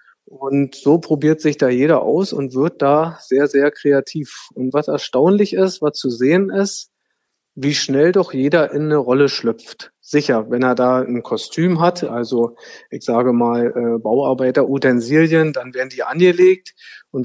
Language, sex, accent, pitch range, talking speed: German, male, German, 130-160 Hz, 165 wpm